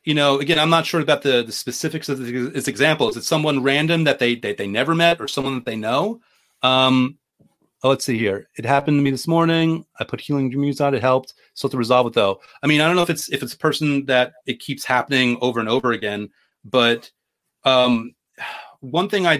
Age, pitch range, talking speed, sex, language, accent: 30-49, 125-150 Hz, 230 wpm, male, English, American